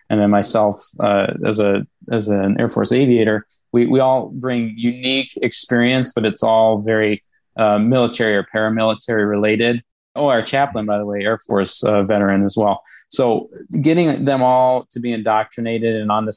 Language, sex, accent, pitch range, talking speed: English, male, American, 105-120 Hz, 175 wpm